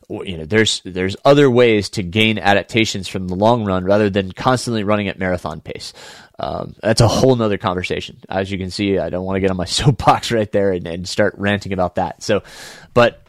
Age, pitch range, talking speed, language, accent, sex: 20-39, 100-135 Hz, 215 wpm, English, American, male